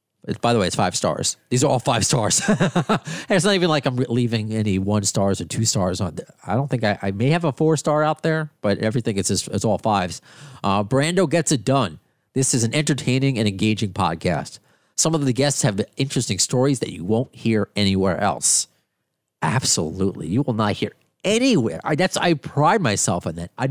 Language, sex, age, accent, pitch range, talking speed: English, male, 40-59, American, 105-140 Hz, 210 wpm